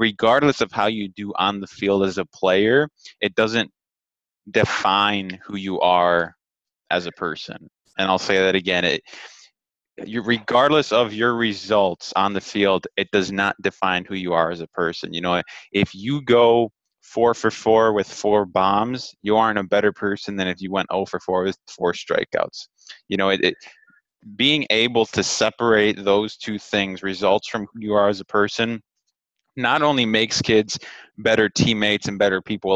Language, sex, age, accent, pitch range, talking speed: English, male, 20-39, American, 95-110 Hz, 180 wpm